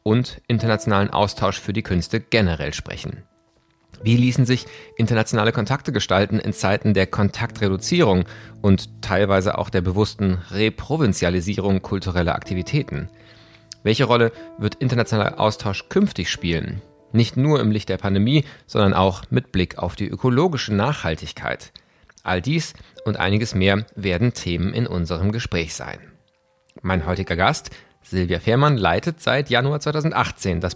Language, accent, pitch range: German, German, 95-125 Hz